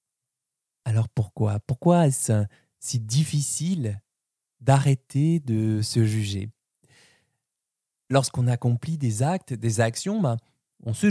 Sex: male